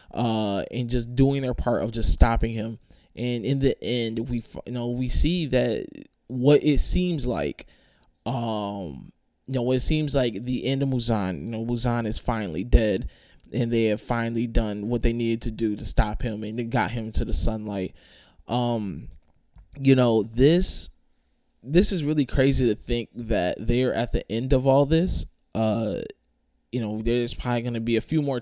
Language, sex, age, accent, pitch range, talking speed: English, male, 20-39, American, 115-135 Hz, 190 wpm